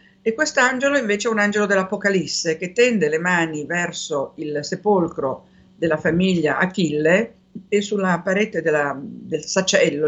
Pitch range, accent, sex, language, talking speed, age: 160-200 Hz, native, female, Italian, 135 wpm, 50-69